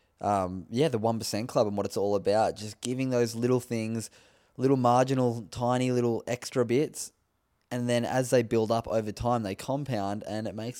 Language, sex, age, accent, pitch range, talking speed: English, male, 20-39, Australian, 105-120 Hz, 190 wpm